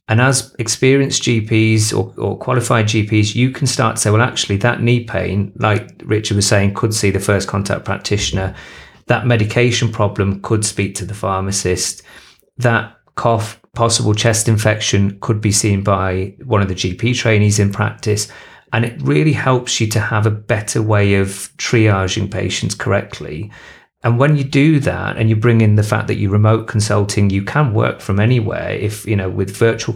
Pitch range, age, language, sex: 100-120 Hz, 30-49, English, male